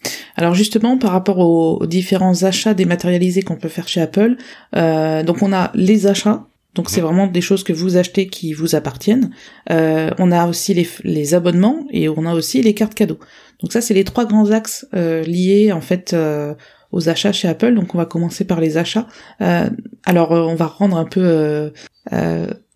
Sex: female